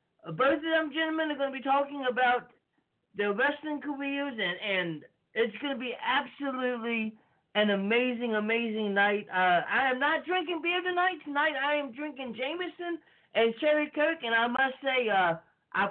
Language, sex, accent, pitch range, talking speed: English, male, American, 230-295 Hz, 170 wpm